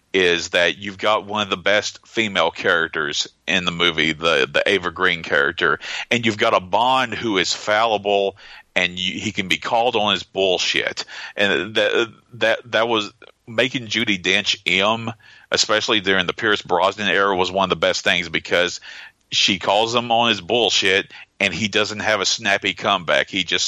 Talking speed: 180 wpm